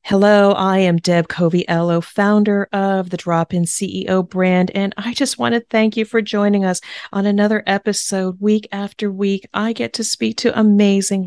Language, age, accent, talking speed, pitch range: English, 40-59, American, 180 wpm, 160-200 Hz